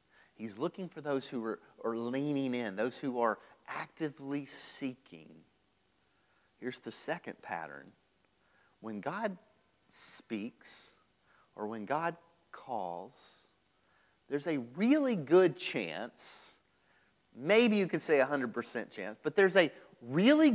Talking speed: 115 wpm